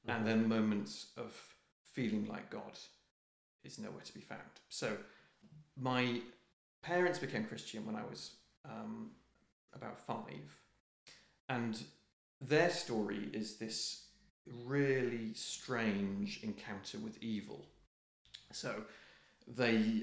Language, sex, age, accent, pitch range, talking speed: English, male, 40-59, British, 105-175 Hz, 105 wpm